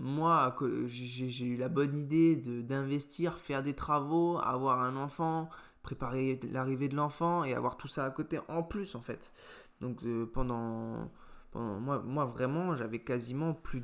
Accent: French